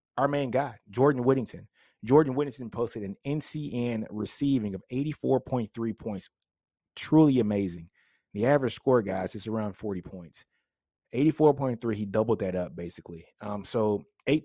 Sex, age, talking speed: male, 30-49, 135 wpm